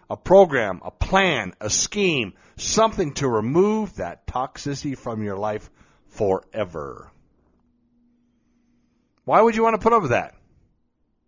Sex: male